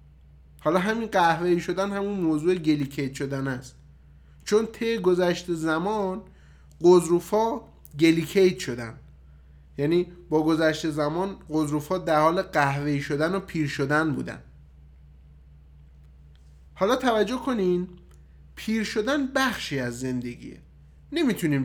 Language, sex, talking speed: Persian, male, 110 wpm